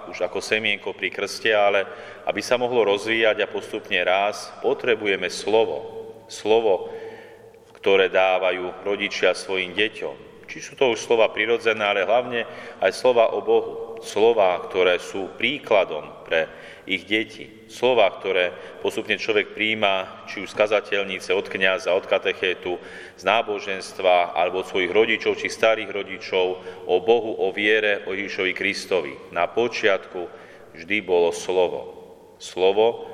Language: Slovak